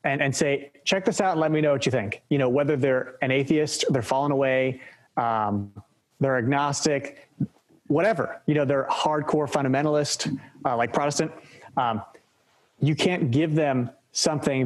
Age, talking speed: 30-49, 165 wpm